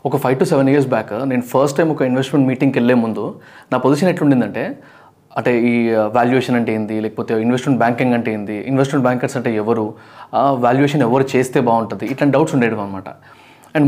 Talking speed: 175 wpm